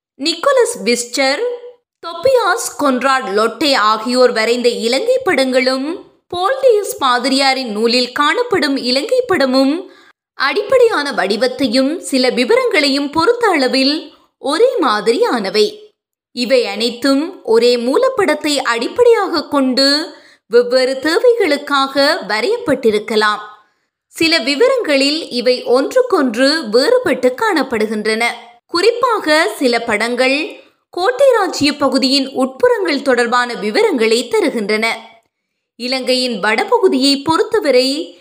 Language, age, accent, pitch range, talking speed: Tamil, 20-39, native, 245-390 Hz, 75 wpm